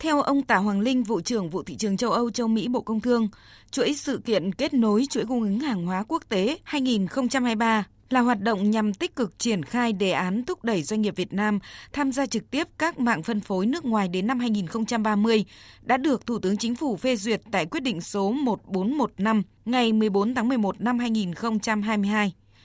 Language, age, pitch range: Vietnamese, 20-39, 200-245 Hz